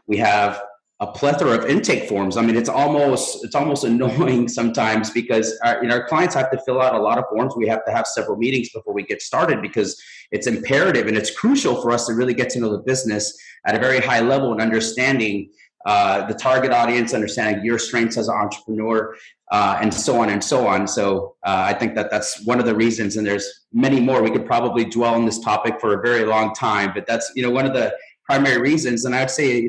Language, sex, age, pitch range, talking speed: English, male, 30-49, 110-130 Hz, 235 wpm